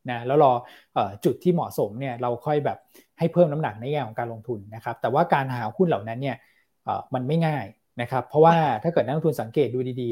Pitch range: 120-160 Hz